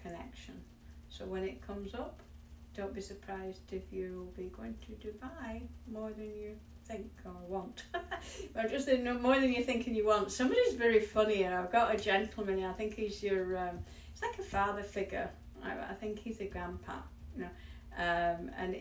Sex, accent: female, British